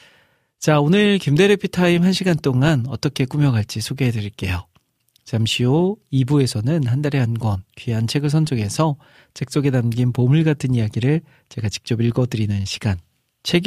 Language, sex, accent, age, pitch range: Korean, male, native, 40-59, 115-155 Hz